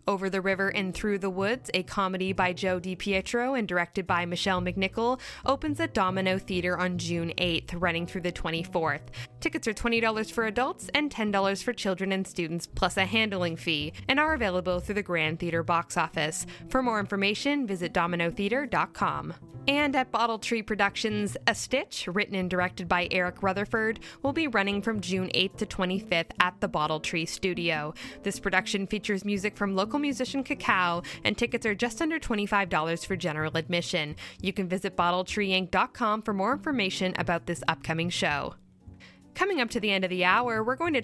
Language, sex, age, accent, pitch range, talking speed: English, female, 10-29, American, 175-225 Hz, 180 wpm